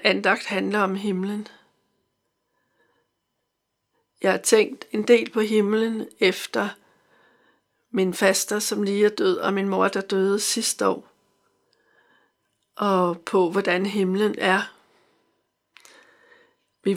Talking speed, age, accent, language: 110 wpm, 60-79, native, Danish